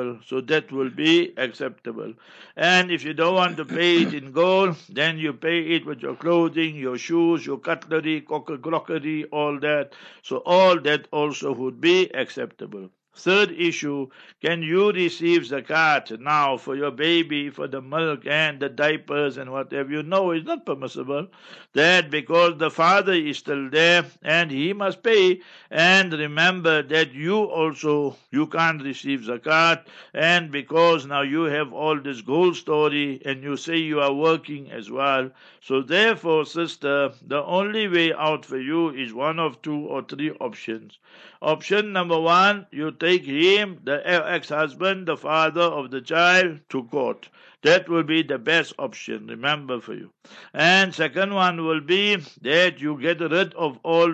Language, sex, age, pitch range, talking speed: English, male, 60-79, 145-170 Hz, 165 wpm